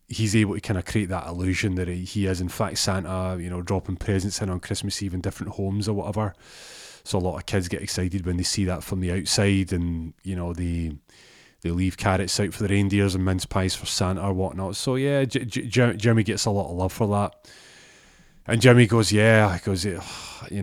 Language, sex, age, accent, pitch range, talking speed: English, male, 30-49, British, 90-115 Hz, 225 wpm